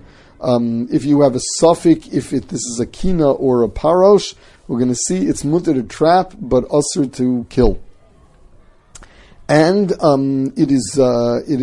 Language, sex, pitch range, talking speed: English, male, 120-155 Hz, 170 wpm